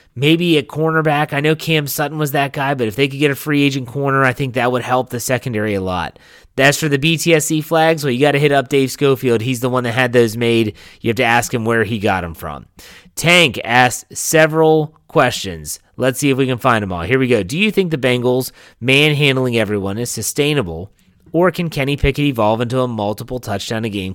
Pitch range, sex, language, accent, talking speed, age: 115-145 Hz, male, English, American, 225 wpm, 30-49